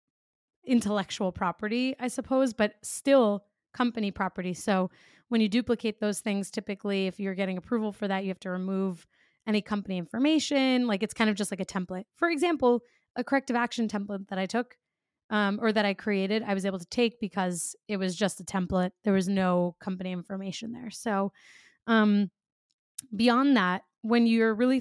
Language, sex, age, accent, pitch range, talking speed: English, female, 20-39, American, 195-240 Hz, 180 wpm